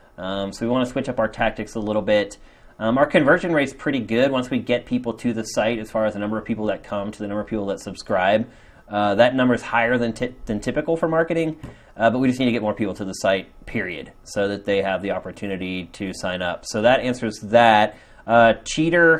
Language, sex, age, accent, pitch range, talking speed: English, male, 30-49, American, 105-130 Hz, 255 wpm